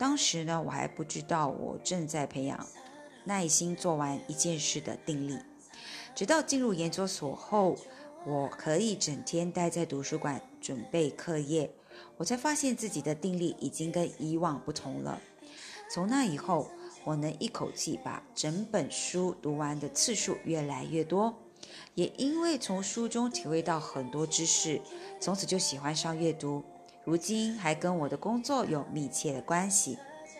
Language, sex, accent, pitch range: English, female, Chinese, 150-215 Hz